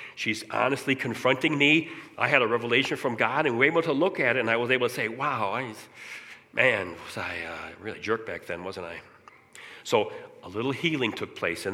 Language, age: English, 40-59